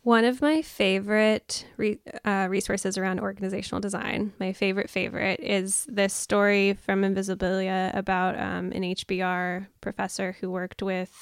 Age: 10-29